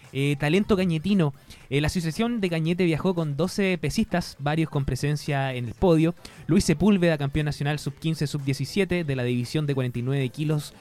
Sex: male